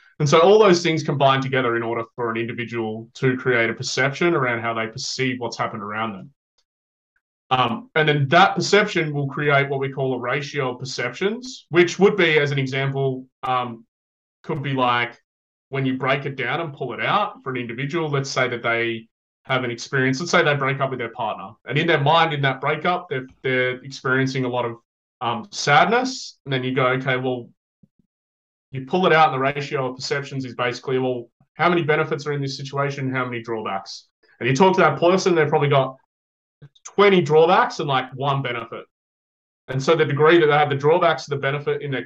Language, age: English, 20-39